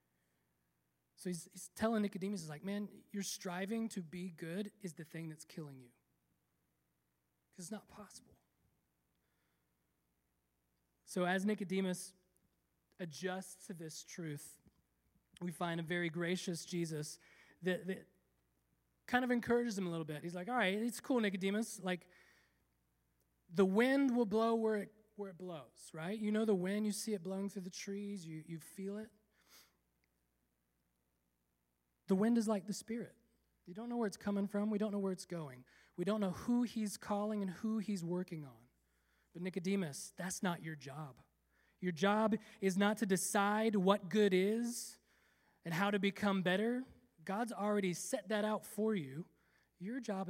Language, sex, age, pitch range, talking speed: English, male, 20-39, 135-205 Hz, 160 wpm